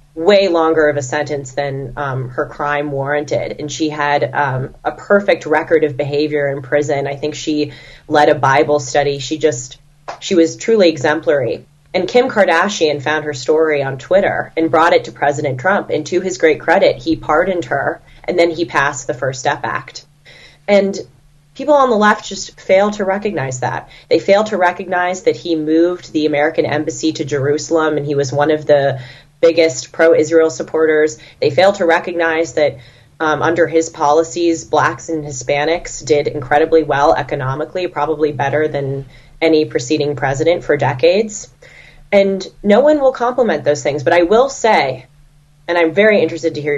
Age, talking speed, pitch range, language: 30-49, 175 wpm, 145-170 Hz, English